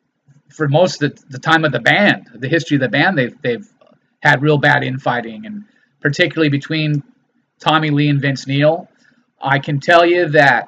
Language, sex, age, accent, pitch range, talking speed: English, male, 30-49, American, 140-165 Hz, 180 wpm